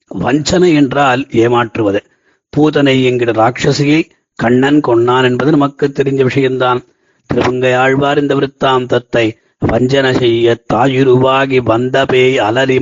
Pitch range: 125-145 Hz